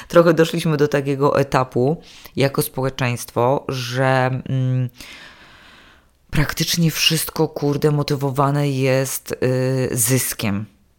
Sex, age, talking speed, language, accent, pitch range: female, 20-39, 75 wpm, Polish, native, 125-145 Hz